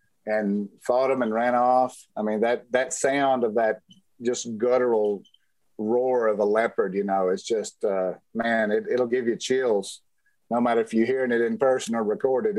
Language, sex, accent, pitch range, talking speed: English, male, American, 115-150 Hz, 190 wpm